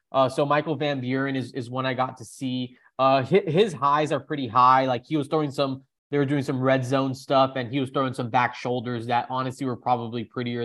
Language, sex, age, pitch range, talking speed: English, male, 20-39, 120-135 Hz, 240 wpm